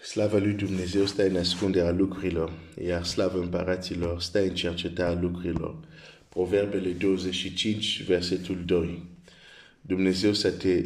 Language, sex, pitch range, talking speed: Romanian, male, 95-115 Hz, 160 wpm